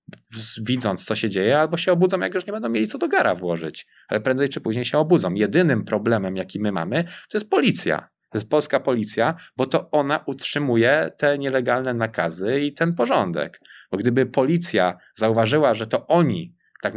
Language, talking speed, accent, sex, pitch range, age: Polish, 185 wpm, native, male, 105-135 Hz, 20-39